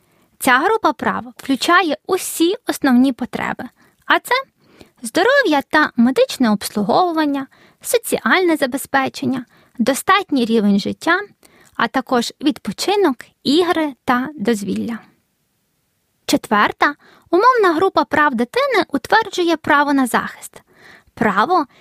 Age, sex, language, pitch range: 20-39, female, Ukrainian, 235-335 Hz